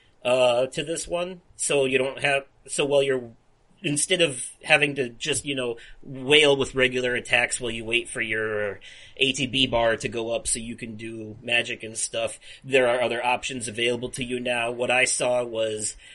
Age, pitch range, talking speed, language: 30-49, 120-135 Hz, 190 wpm, English